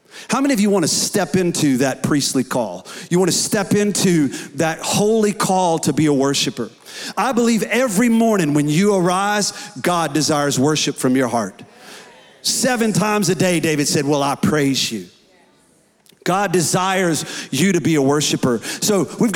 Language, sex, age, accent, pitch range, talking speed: English, male, 40-59, American, 155-205 Hz, 170 wpm